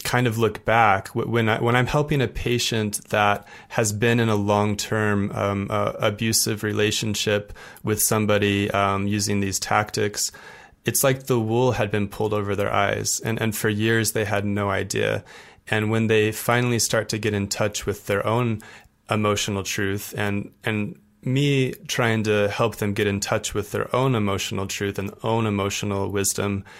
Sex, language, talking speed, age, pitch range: male, English, 175 wpm, 30-49, 105-115 Hz